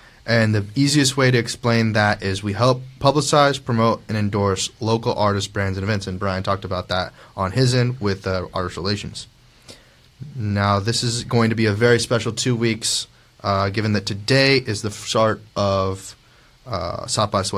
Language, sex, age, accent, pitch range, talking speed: English, male, 20-39, American, 100-120 Hz, 180 wpm